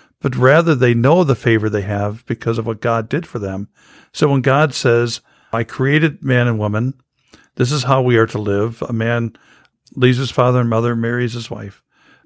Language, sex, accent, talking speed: English, male, American, 200 wpm